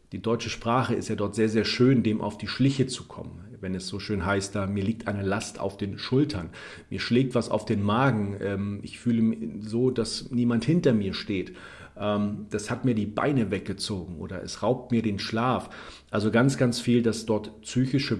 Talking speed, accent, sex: 200 wpm, German, male